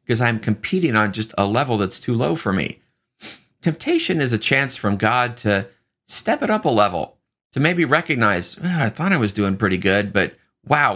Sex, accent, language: male, American, English